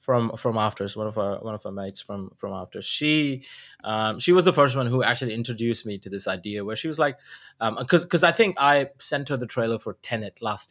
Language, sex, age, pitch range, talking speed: English, male, 20-39, 110-135 Hz, 240 wpm